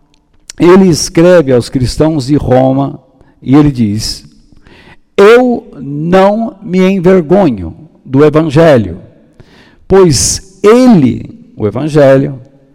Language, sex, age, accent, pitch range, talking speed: Portuguese, male, 60-79, Brazilian, 135-200 Hz, 90 wpm